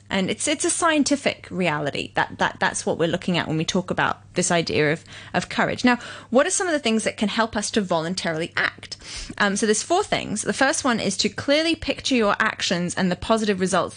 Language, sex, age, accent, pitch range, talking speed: English, female, 20-39, British, 185-230 Hz, 230 wpm